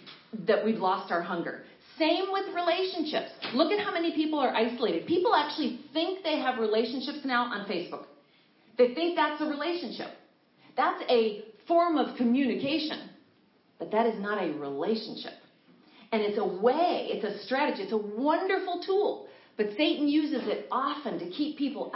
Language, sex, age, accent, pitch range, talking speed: English, female, 40-59, American, 215-300 Hz, 160 wpm